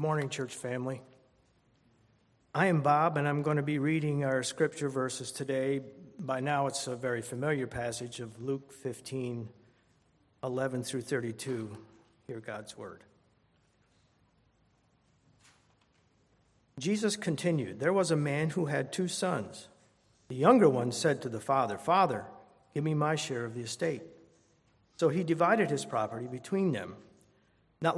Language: English